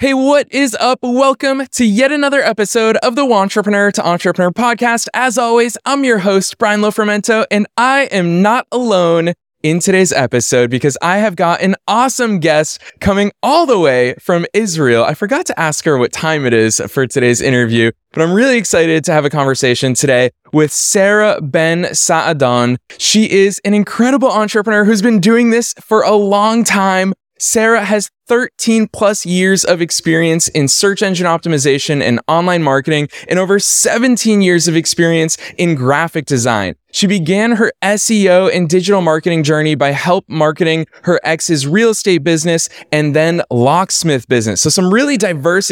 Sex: male